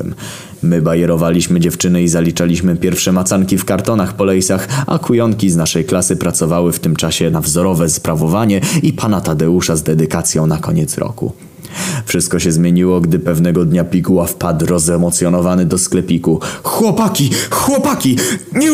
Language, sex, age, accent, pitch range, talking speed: Polish, male, 20-39, native, 85-100 Hz, 145 wpm